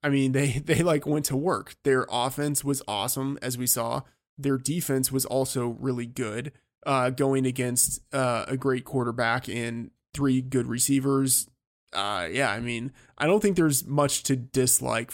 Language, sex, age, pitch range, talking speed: English, male, 20-39, 120-140 Hz, 170 wpm